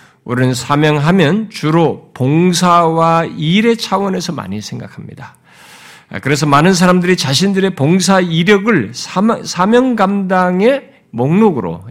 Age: 50-69